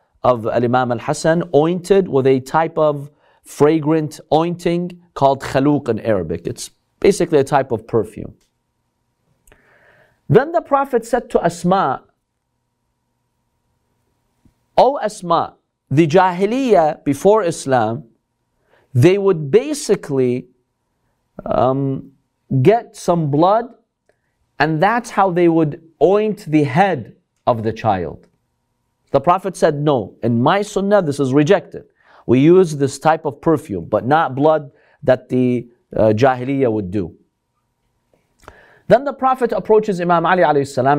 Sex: male